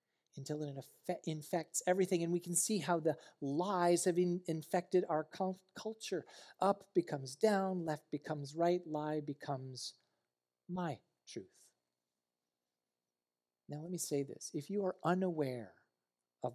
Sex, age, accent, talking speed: male, 40-59, American, 125 wpm